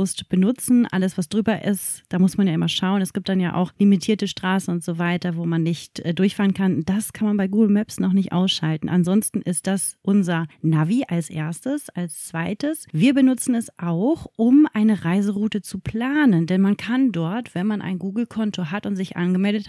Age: 30-49